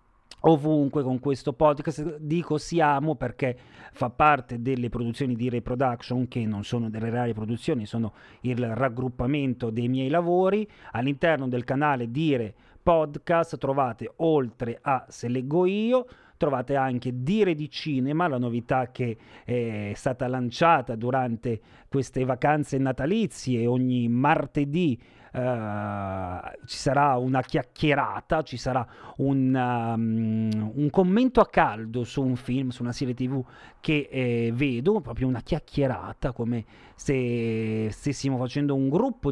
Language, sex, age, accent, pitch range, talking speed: Italian, male, 40-59, native, 120-145 Hz, 130 wpm